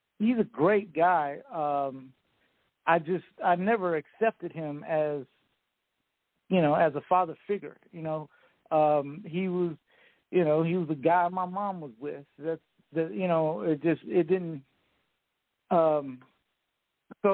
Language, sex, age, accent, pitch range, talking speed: English, male, 50-69, American, 155-185 Hz, 150 wpm